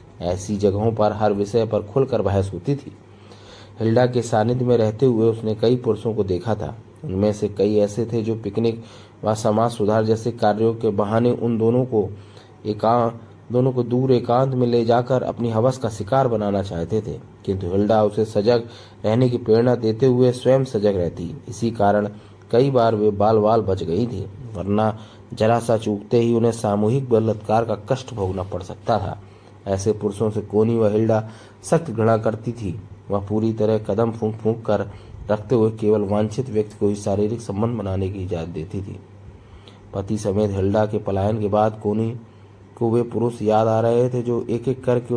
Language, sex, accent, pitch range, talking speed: Hindi, male, native, 100-115 Hz, 185 wpm